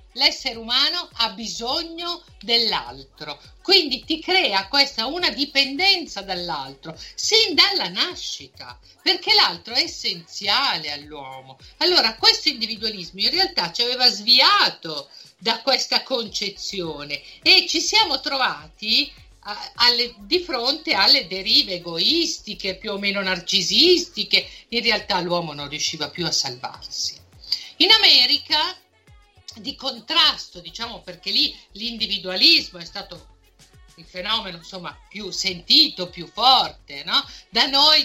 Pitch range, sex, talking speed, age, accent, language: 185-270 Hz, female, 110 wpm, 50-69, native, Italian